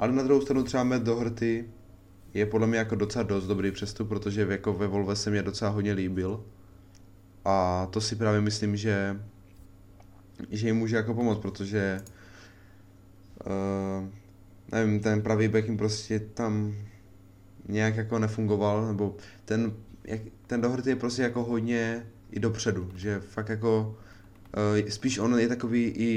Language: Czech